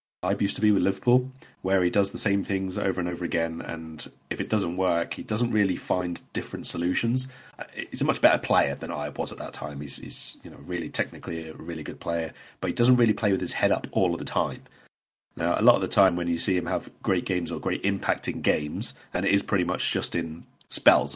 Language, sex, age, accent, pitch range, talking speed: English, male, 30-49, British, 85-110 Hz, 245 wpm